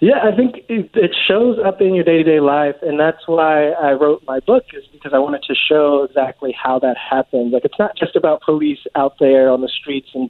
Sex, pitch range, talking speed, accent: male, 135-155 Hz, 225 wpm, American